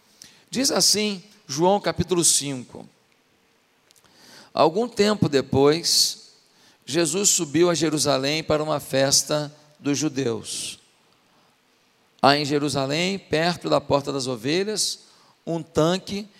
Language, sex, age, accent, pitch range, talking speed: Portuguese, male, 50-69, Brazilian, 150-205 Hz, 100 wpm